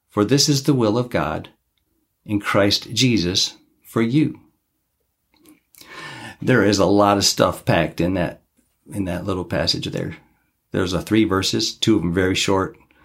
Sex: male